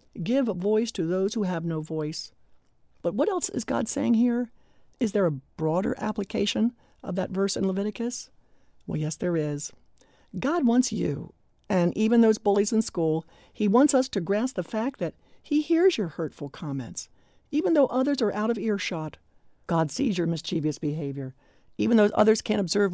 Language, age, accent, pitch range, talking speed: English, 60-79, American, 160-230 Hz, 180 wpm